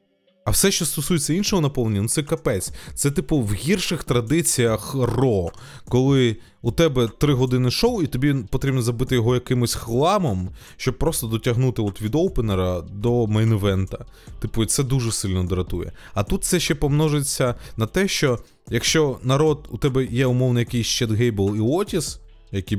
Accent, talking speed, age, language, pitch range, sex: native, 160 wpm, 20-39, Ukrainian, 100-135 Hz, male